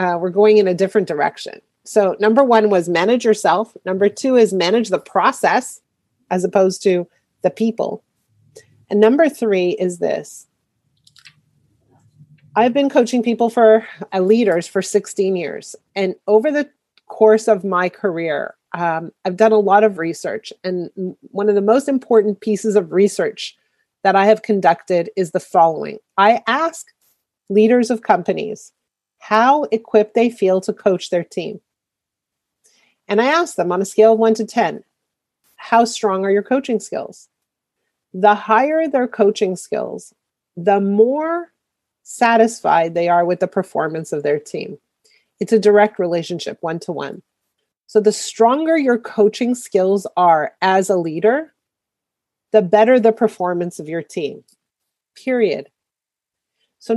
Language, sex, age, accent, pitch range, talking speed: English, female, 30-49, American, 185-230 Hz, 145 wpm